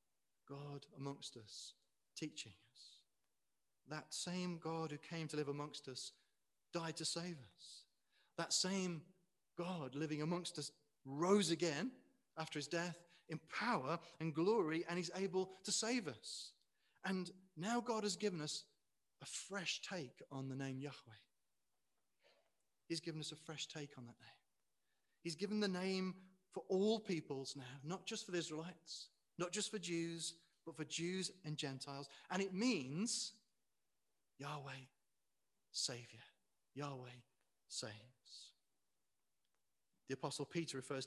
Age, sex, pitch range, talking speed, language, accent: 30-49, male, 145-185 Hz, 135 wpm, English, British